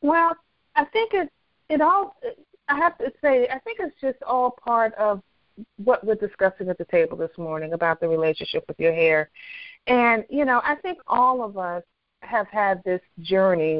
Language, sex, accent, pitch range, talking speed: English, female, American, 195-255 Hz, 185 wpm